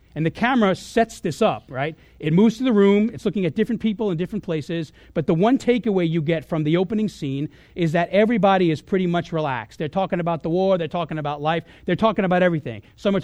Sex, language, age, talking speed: male, English, 40-59, 235 wpm